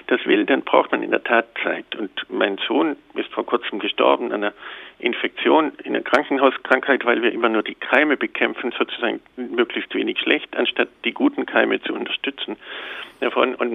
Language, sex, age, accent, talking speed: German, male, 50-69, German, 175 wpm